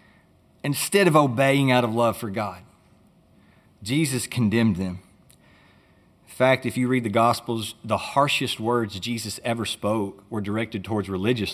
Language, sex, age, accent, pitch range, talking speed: English, male, 30-49, American, 105-150 Hz, 145 wpm